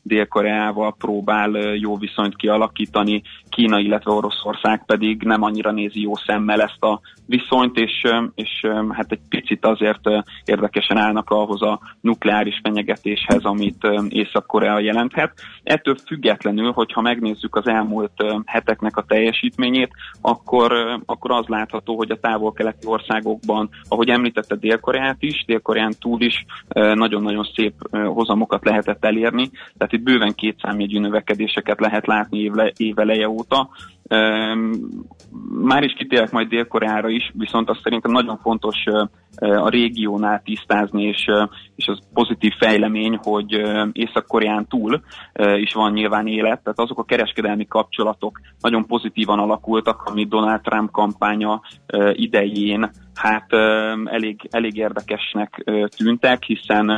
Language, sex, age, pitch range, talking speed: Hungarian, male, 30-49, 105-110 Hz, 130 wpm